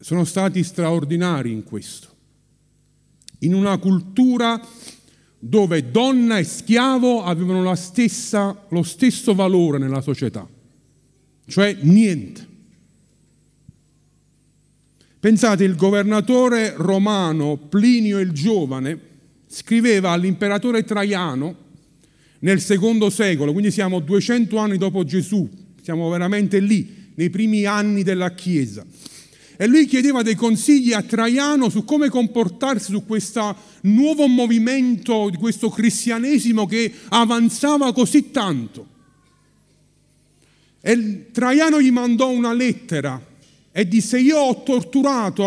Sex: male